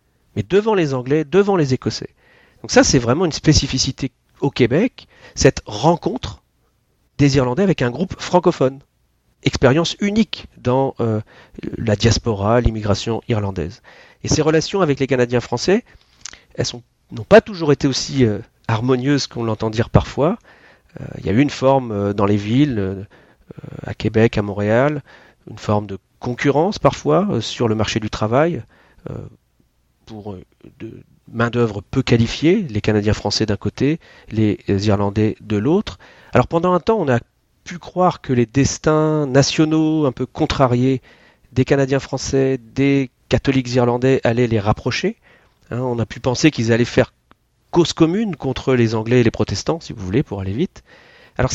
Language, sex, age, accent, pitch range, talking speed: French, male, 40-59, French, 110-145 Hz, 160 wpm